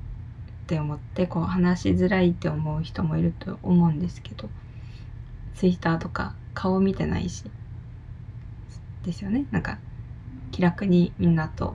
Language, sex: Japanese, female